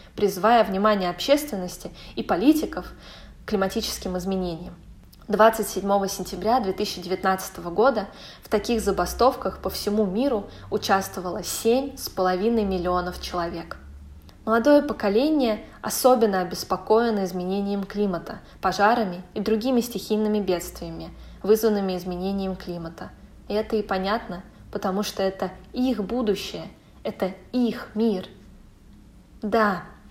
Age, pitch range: 20-39, 190-230 Hz